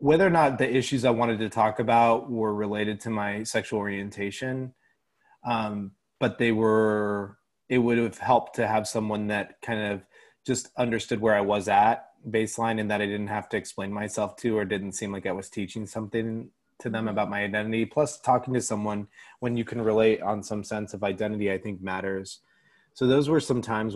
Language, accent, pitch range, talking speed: English, American, 105-115 Hz, 200 wpm